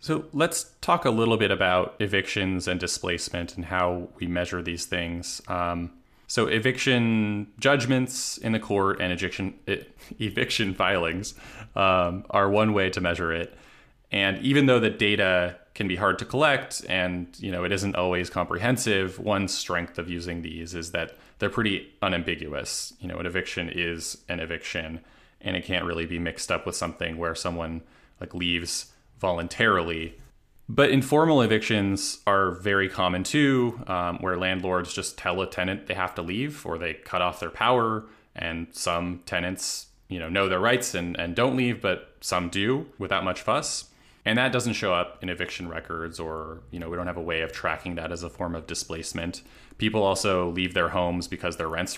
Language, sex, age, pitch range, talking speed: English, male, 20-39, 85-110 Hz, 180 wpm